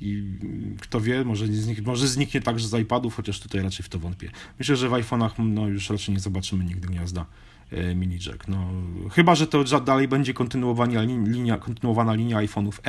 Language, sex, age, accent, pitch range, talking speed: Polish, male, 40-59, native, 90-110 Hz, 165 wpm